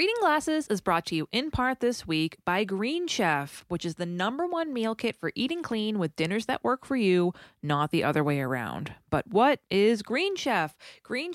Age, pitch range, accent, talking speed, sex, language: 20-39, 165-245 Hz, American, 210 wpm, female, English